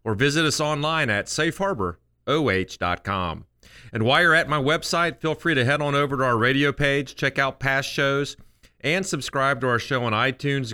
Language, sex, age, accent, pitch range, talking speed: English, male, 40-59, American, 115-145 Hz, 185 wpm